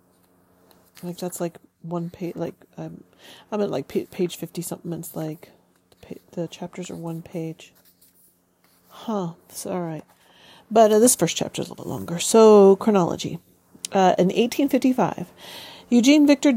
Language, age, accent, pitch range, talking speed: English, 40-59, American, 165-225 Hz, 165 wpm